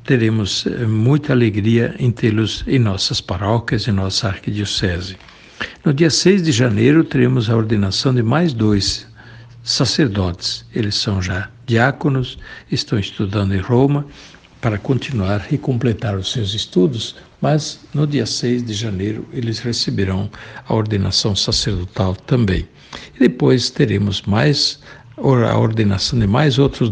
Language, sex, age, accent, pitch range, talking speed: Portuguese, male, 60-79, Brazilian, 100-130 Hz, 130 wpm